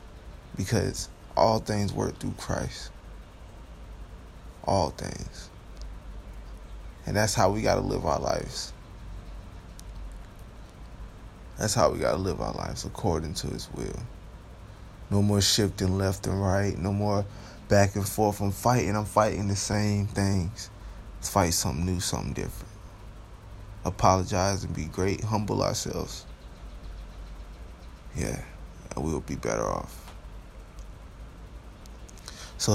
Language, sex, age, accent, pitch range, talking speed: English, male, 20-39, American, 95-110 Hz, 115 wpm